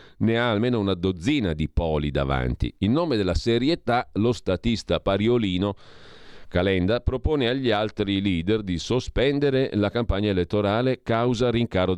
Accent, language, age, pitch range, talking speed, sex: native, Italian, 40-59, 90-120 Hz, 135 wpm, male